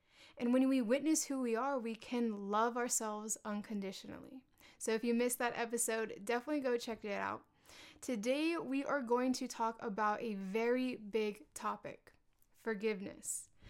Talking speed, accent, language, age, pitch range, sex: 155 wpm, American, English, 20-39, 220-255 Hz, female